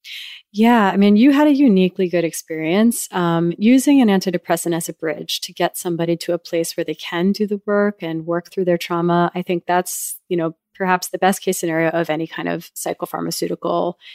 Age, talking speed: 30-49, 205 wpm